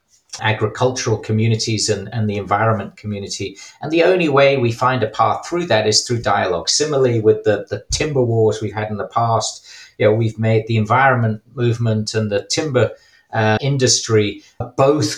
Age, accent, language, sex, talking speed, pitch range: 40-59, British, English, male, 175 wpm, 110-125 Hz